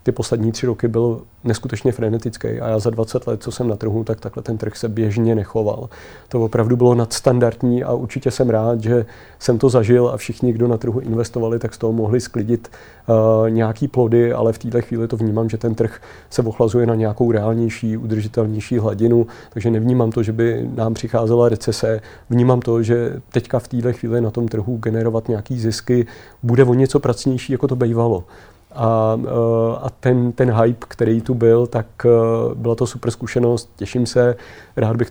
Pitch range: 115-125 Hz